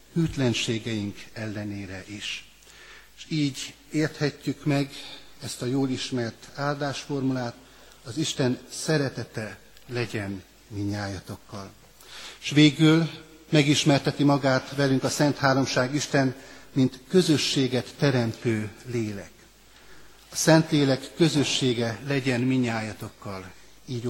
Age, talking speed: 60-79, 90 wpm